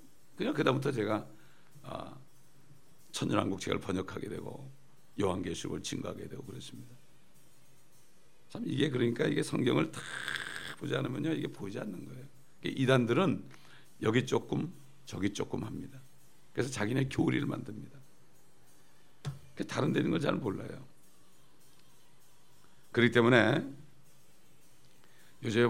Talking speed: 95 wpm